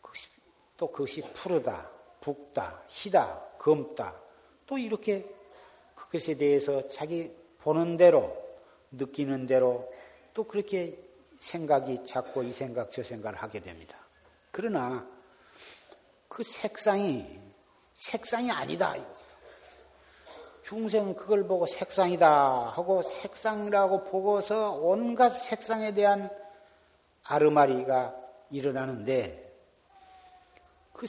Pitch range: 140-215 Hz